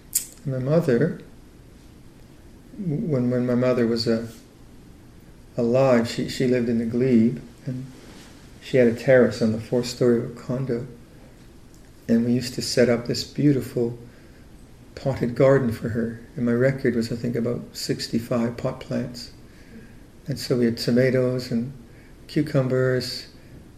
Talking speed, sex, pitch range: 145 wpm, male, 120-130 Hz